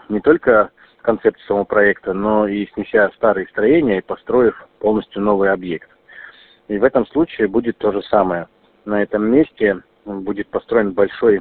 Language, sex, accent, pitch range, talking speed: Russian, male, native, 100-115 Hz, 155 wpm